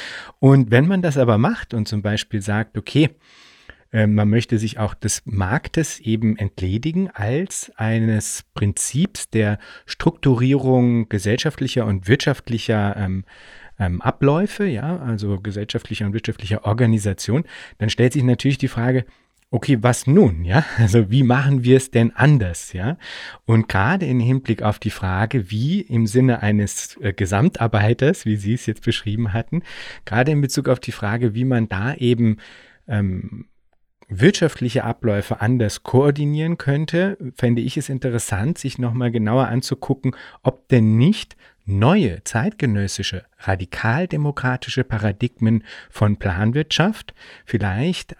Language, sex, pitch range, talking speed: German, male, 105-135 Hz, 135 wpm